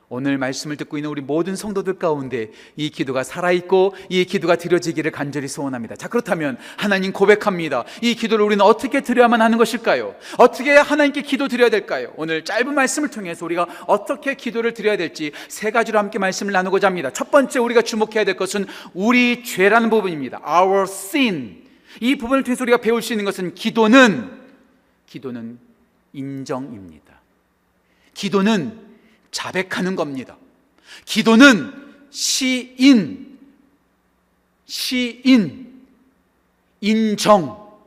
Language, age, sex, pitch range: Korean, 40-59, male, 160-240 Hz